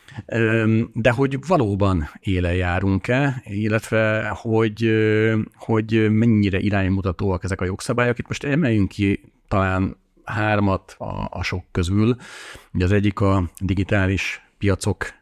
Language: Hungarian